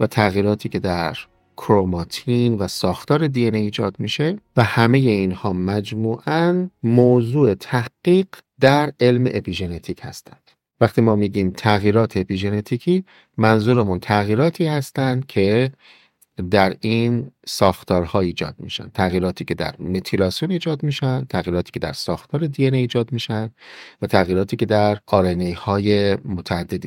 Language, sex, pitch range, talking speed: Persian, male, 95-130 Hz, 120 wpm